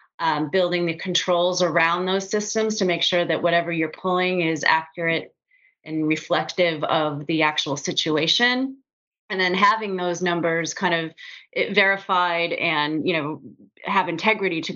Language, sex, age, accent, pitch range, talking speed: English, female, 30-49, American, 155-185 Hz, 145 wpm